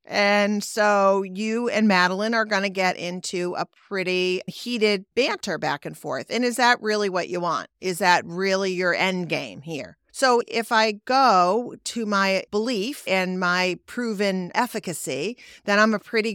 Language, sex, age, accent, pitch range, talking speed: English, female, 40-59, American, 185-230 Hz, 170 wpm